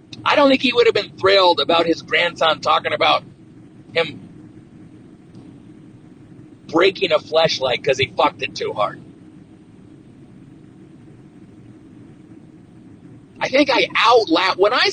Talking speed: 115 wpm